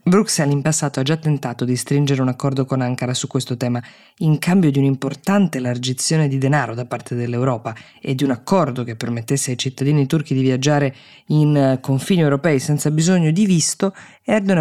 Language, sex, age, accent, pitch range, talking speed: Italian, female, 20-39, native, 125-155 Hz, 180 wpm